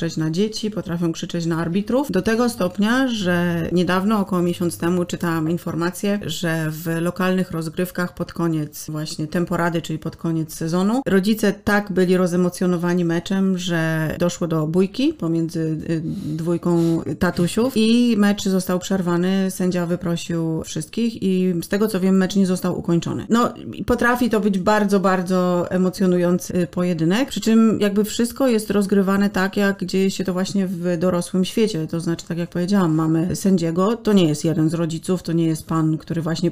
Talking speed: 160 wpm